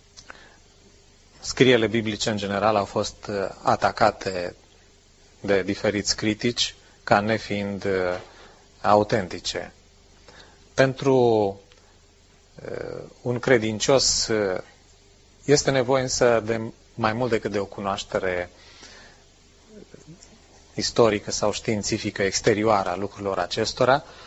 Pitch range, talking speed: 95-120 Hz, 80 wpm